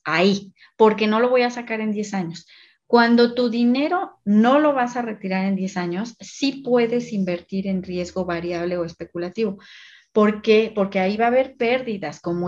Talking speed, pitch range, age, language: 185 wpm, 180-230 Hz, 30-49, Spanish